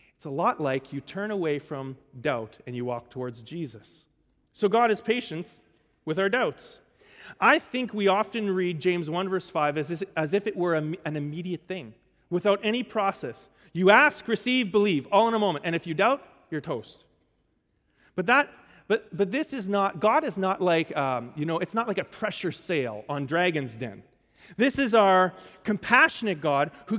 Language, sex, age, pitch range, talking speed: English, male, 30-49, 160-220 Hz, 185 wpm